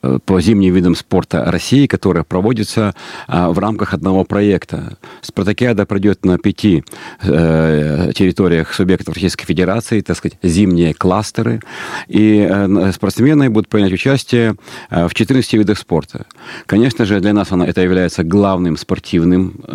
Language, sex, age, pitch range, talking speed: Russian, male, 40-59, 85-105 Hz, 130 wpm